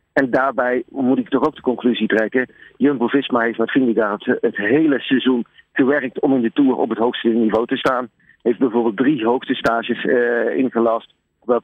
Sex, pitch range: male, 130-150 Hz